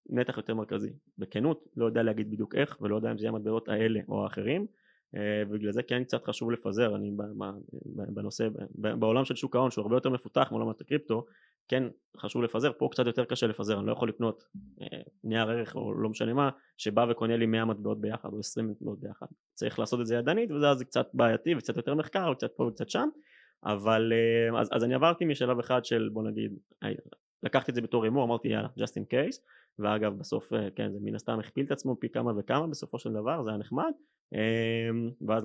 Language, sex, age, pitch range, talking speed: Hebrew, male, 20-39, 110-130 Hz, 200 wpm